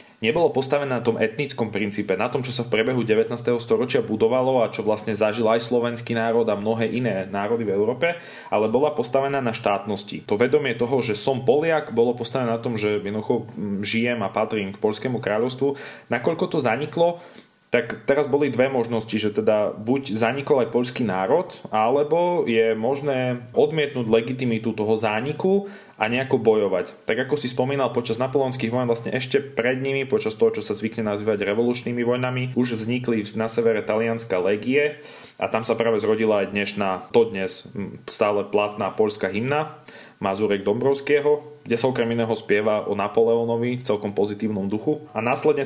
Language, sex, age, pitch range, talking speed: Slovak, male, 20-39, 110-135 Hz, 170 wpm